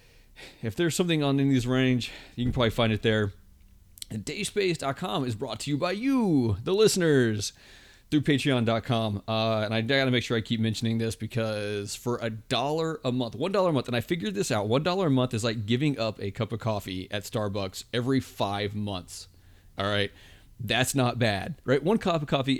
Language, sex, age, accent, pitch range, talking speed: English, male, 30-49, American, 105-135 Hz, 200 wpm